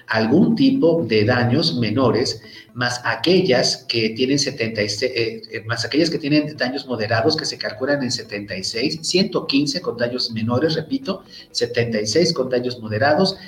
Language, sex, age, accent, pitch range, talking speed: Spanish, male, 40-59, Mexican, 115-145 Hz, 140 wpm